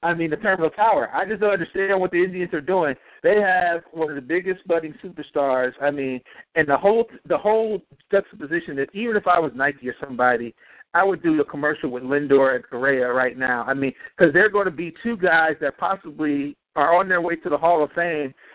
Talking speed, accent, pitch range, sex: 225 wpm, American, 145-190 Hz, male